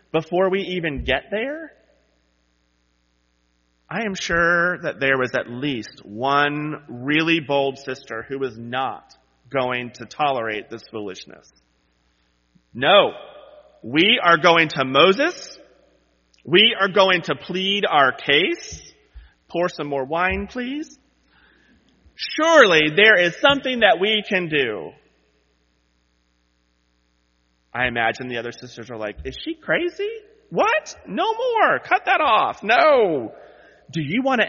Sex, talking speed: male, 125 wpm